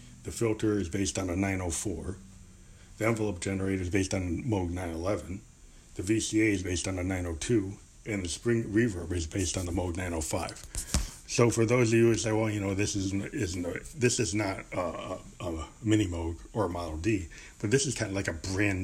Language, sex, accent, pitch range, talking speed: English, male, American, 90-110 Hz, 210 wpm